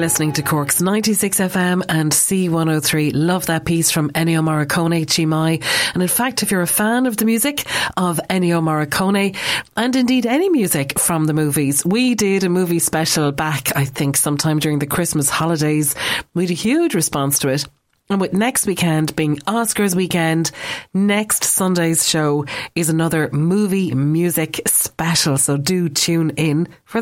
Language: English